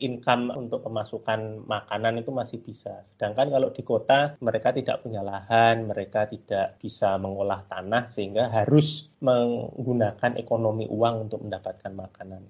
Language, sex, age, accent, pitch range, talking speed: Indonesian, male, 30-49, native, 110-135 Hz, 135 wpm